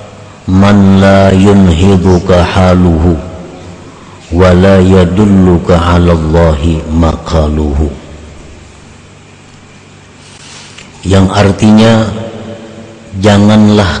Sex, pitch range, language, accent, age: male, 85-105 Hz, Indonesian, native, 50-69